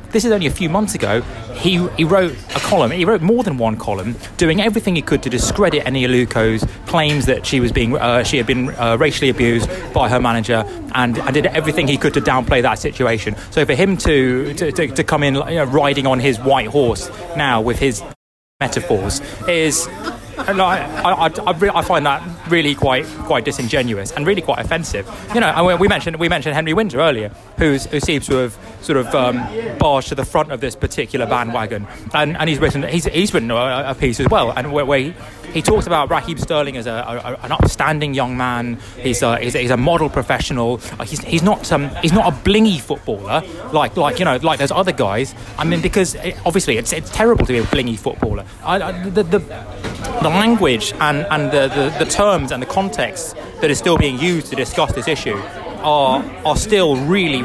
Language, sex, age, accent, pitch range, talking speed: English, male, 20-39, British, 125-170 Hz, 220 wpm